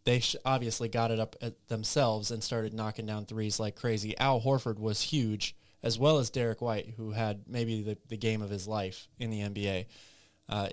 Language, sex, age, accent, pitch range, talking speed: English, male, 20-39, American, 105-125 Hz, 205 wpm